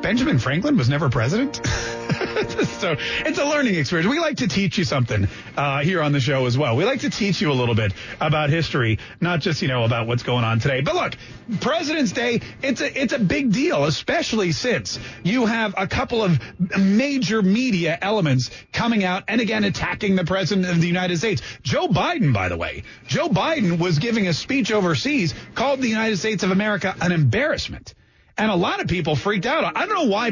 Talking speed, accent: 205 wpm, American